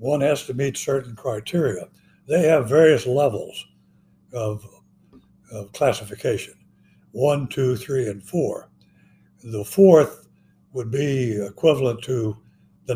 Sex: male